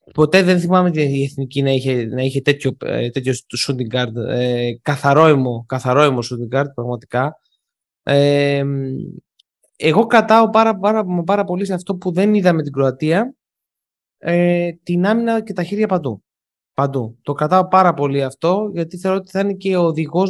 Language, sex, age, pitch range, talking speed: Greek, male, 20-39, 135-195 Hz, 155 wpm